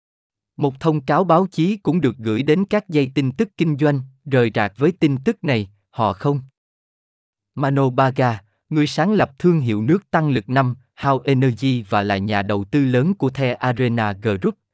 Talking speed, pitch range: 185 wpm, 110-155 Hz